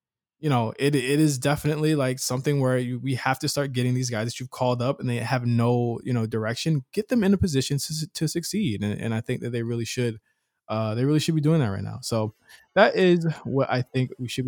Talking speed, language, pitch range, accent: 255 wpm, English, 115-145 Hz, American